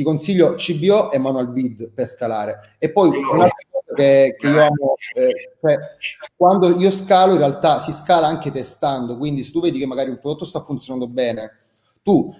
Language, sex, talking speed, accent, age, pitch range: Italian, male, 180 wpm, native, 30-49, 135-175 Hz